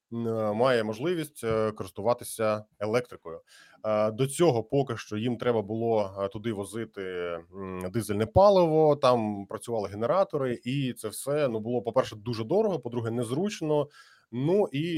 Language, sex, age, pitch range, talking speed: Ukrainian, male, 20-39, 105-135 Hz, 120 wpm